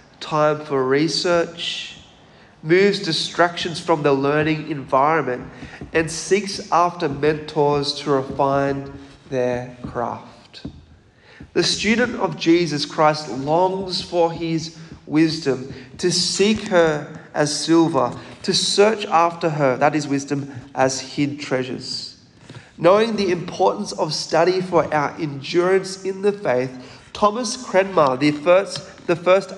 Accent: Australian